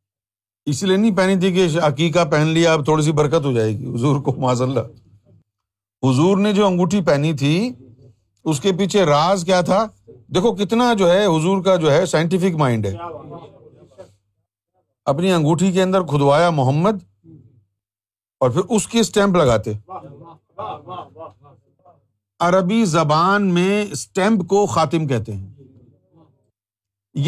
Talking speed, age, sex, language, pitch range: 135 wpm, 50-69, male, Urdu, 120-195 Hz